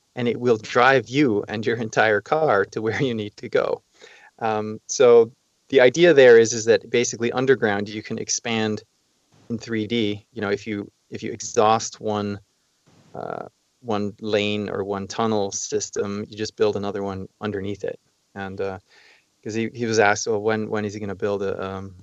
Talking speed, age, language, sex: 190 wpm, 20-39, English, male